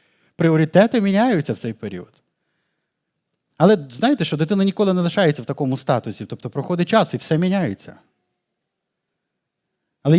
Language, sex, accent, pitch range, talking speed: Ukrainian, male, native, 135-190 Hz, 130 wpm